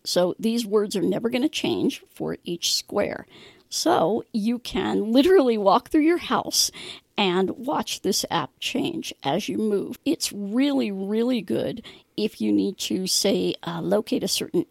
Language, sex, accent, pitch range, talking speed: English, female, American, 185-245 Hz, 165 wpm